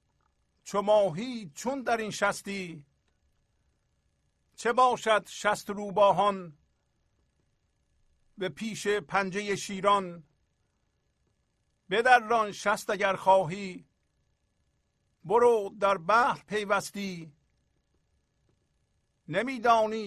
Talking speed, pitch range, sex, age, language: 65 wpm, 175-215 Hz, male, 50-69, Persian